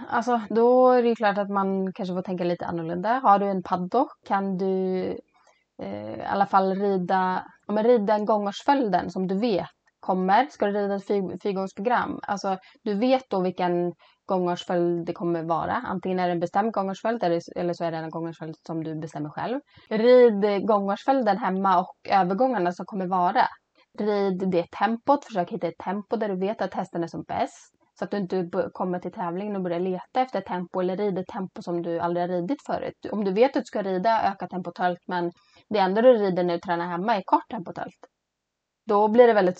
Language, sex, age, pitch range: English, female, 20-39, 180-210 Hz